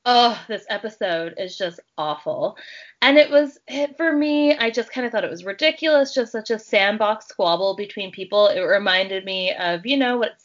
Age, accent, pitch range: 20-39, American, 205-265 Hz